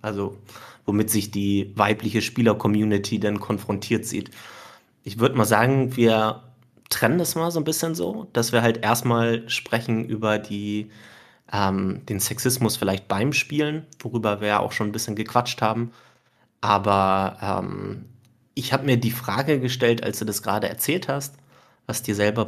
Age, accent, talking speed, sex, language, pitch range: 30-49, German, 160 wpm, male, German, 105-125 Hz